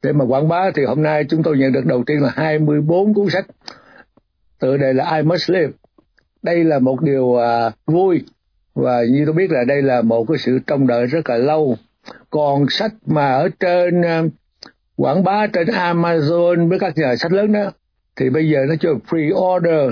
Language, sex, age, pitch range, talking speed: Vietnamese, male, 60-79, 135-185 Hz, 200 wpm